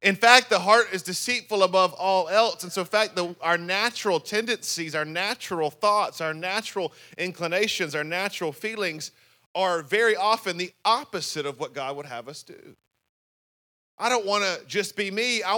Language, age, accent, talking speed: English, 30-49, American, 175 wpm